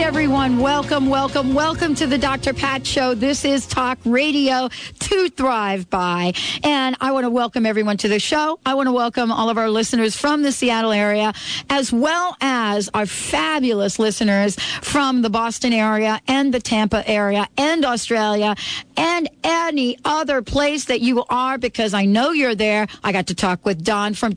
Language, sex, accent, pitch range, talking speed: English, female, American, 215-275 Hz, 175 wpm